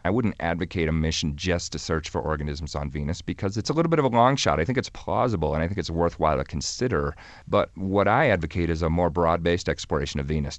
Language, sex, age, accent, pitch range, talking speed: English, male, 40-59, American, 80-95 Hz, 245 wpm